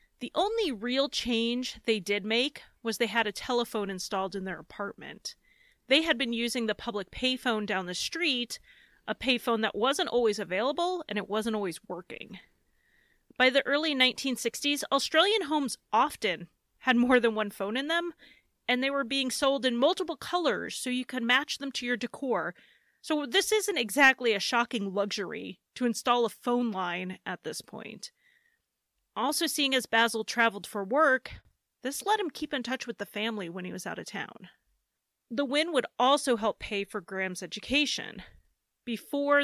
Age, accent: 30-49, American